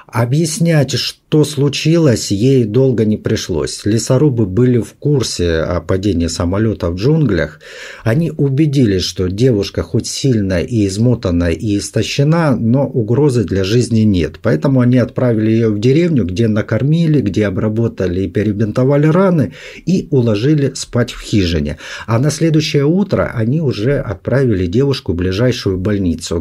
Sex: male